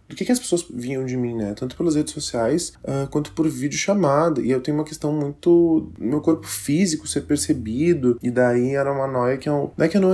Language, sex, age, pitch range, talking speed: Portuguese, male, 20-39, 110-150 Hz, 245 wpm